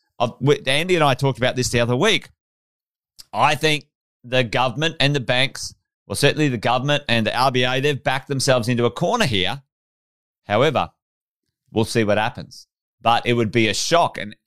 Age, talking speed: 30-49, 175 wpm